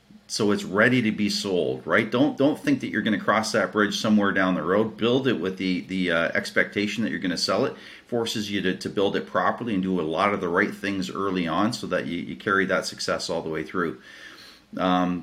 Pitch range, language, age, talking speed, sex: 95-110 Hz, English, 40-59, 250 wpm, male